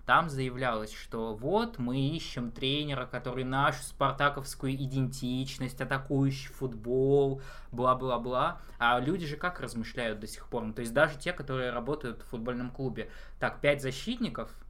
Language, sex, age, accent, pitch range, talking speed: Russian, male, 20-39, native, 125-150 Hz, 145 wpm